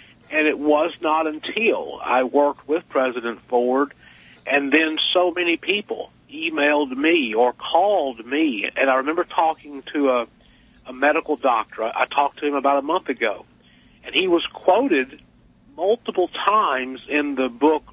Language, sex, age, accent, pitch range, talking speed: English, male, 50-69, American, 135-190 Hz, 155 wpm